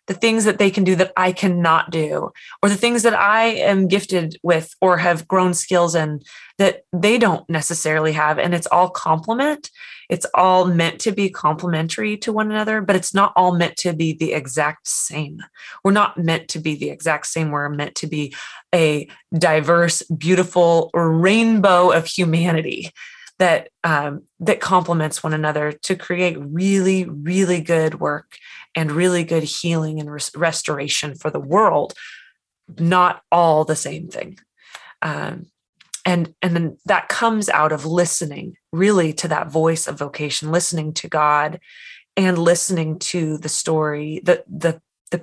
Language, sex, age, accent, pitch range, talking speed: English, female, 20-39, American, 155-185 Hz, 160 wpm